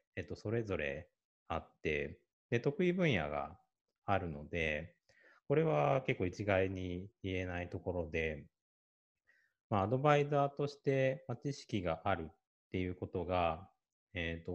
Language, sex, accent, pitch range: Japanese, male, native, 80-115 Hz